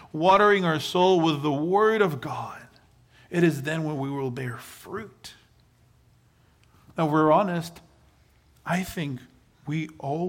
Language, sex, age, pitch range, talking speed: English, male, 40-59, 120-175 Hz, 140 wpm